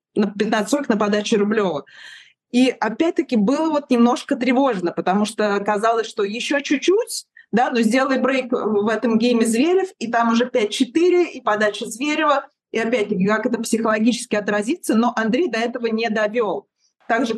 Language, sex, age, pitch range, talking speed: Russian, female, 20-39, 200-245 Hz, 155 wpm